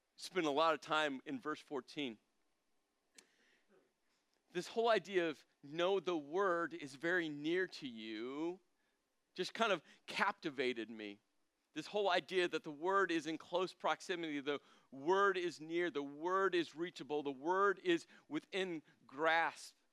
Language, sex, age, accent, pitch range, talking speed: English, male, 40-59, American, 145-185 Hz, 145 wpm